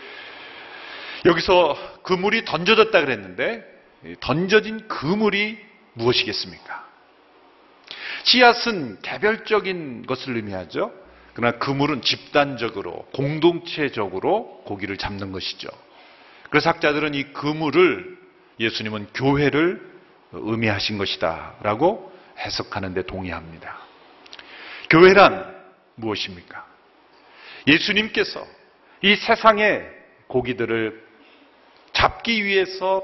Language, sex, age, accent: Korean, male, 40-59, native